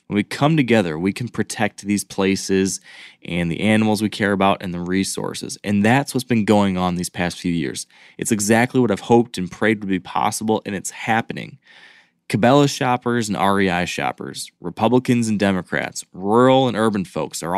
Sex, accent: male, American